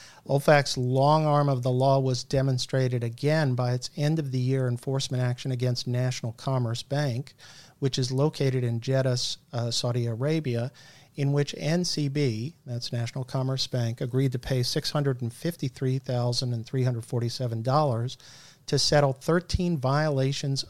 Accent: American